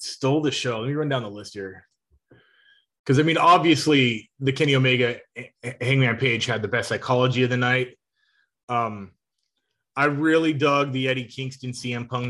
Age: 20-39